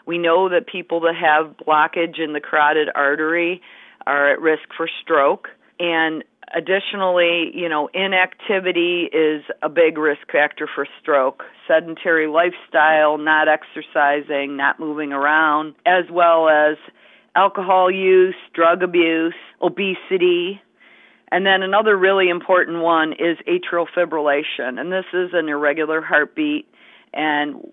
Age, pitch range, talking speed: 50-69, 150-185 Hz, 130 wpm